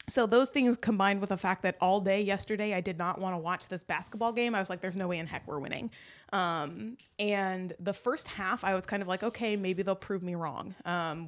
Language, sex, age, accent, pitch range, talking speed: English, female, 20-39, American, 180-215 Hz, 250 wpm